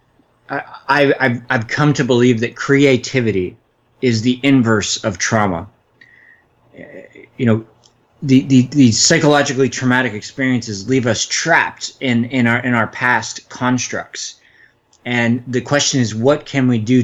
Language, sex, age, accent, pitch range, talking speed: English, male, 30-49, American, 105-125 Hz, 140 wpm